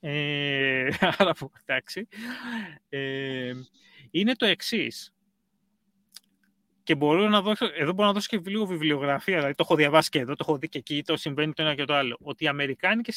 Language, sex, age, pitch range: Greek, male, 30-49, 145-200 Hz